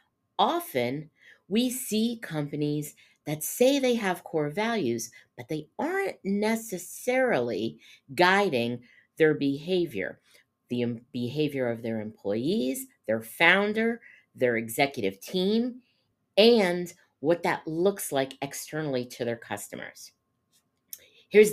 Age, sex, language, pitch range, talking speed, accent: 50-69, female, English, 140-215 Hz, 105 wpm, American